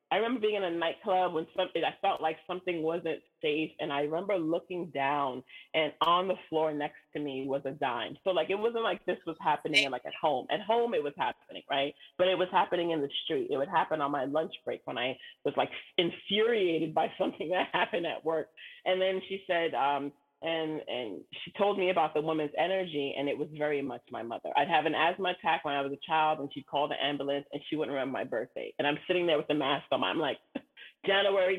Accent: American